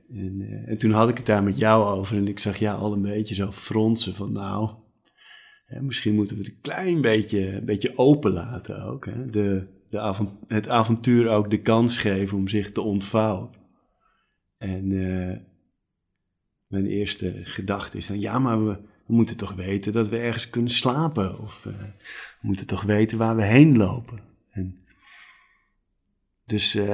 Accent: Dutch